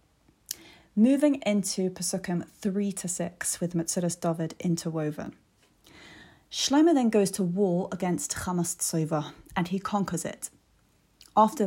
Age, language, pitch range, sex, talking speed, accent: 30-49, English, 175-225 Hz, female, 110 wpm, British